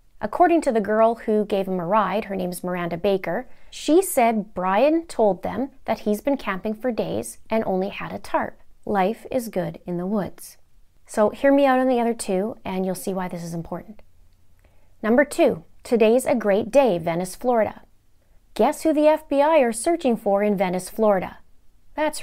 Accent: American